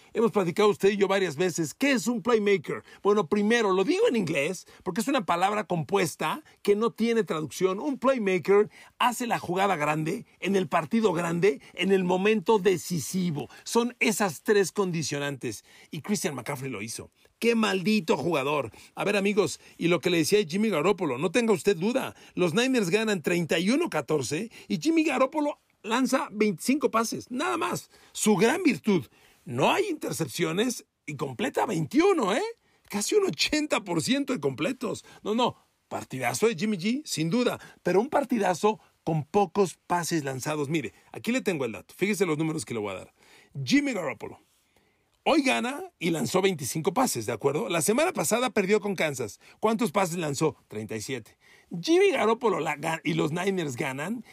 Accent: Mexican